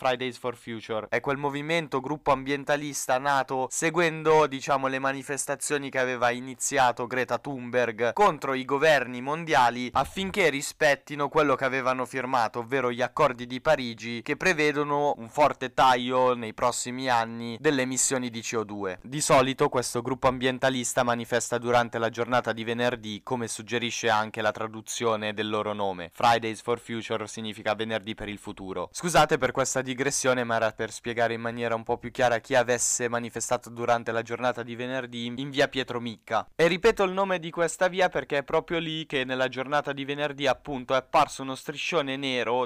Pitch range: 120-140 Hz